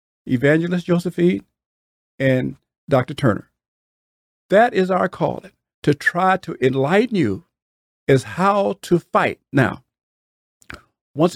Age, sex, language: 50-69, male, English